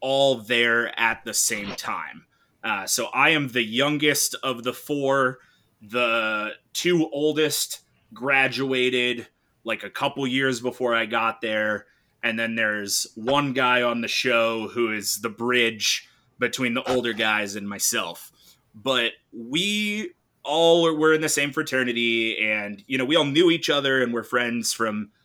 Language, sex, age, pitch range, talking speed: English, male, 20-39, 110-135 Hz, 155 wpm